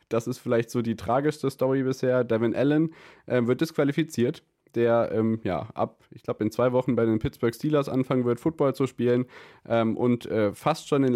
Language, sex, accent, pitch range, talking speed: German, male, German, 105-135 Hz, 200 wpm